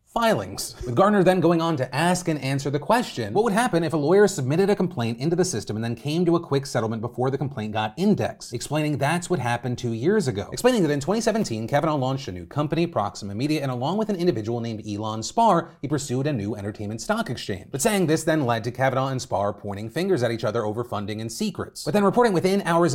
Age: 30-49